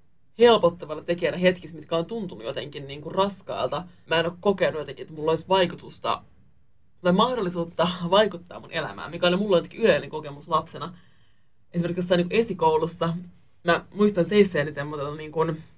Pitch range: 160-185 Hz